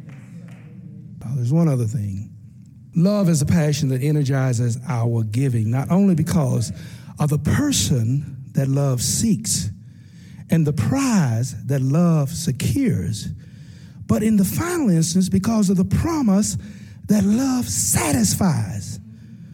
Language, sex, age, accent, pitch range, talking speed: English, male, 50-69, American, 130-200 Hz, 120 wpm